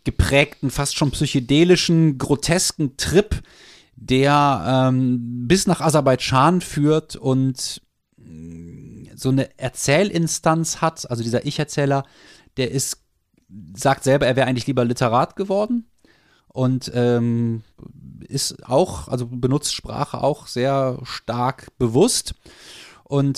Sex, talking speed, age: male, 105 wpm, 30-49